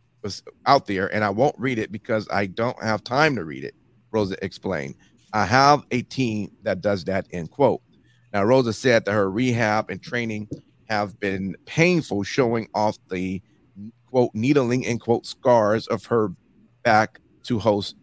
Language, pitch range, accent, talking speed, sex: English, 100-125 Hz, American, 170 wpm, male